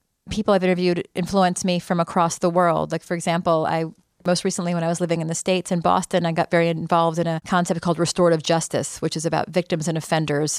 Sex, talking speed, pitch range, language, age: female, 225 wpm, 160-180 Hz, English, 30-49